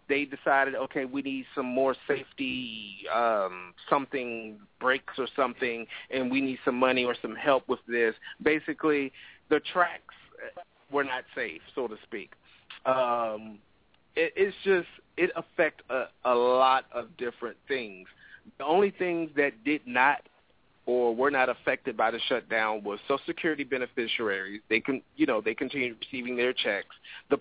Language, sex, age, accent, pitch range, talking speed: English, male, 40-59, American, 120-145 Hz, 155 wpm